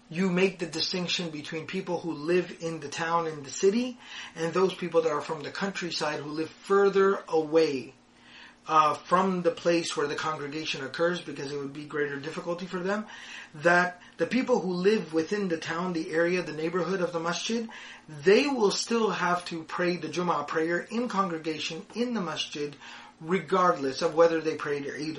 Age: 30-49